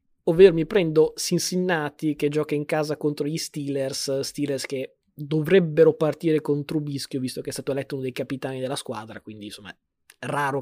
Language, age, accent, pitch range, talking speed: Italian, 20-39, native, 140-170 Hz, 175 wpm